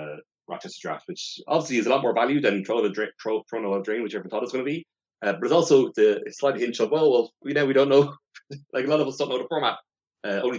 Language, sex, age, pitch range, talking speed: English, male, 30-49, 95-125 Hz, 280 wpm